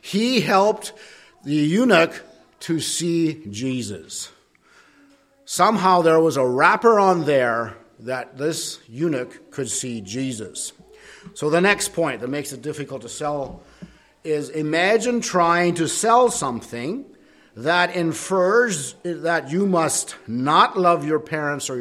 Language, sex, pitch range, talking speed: English, male, 130-170 Hz, 125 wpm